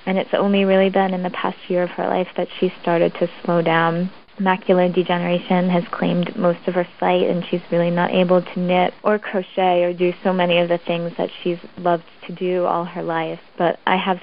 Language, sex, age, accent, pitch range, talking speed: English, female, 20-39, American, 170-195 Hz, 225 wpm